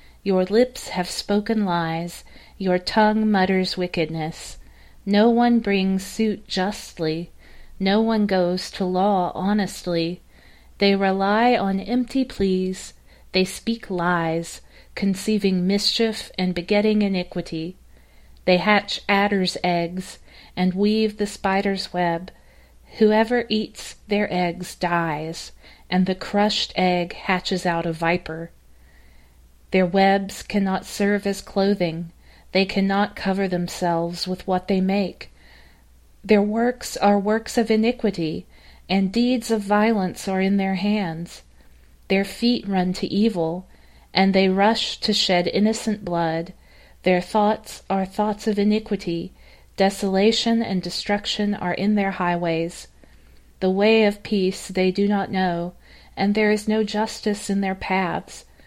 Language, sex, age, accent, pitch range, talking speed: English, female, 40-59, American, 170-205 Hz, 125 wpm